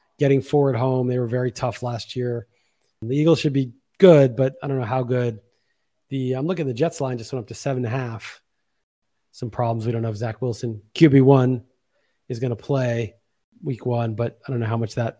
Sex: male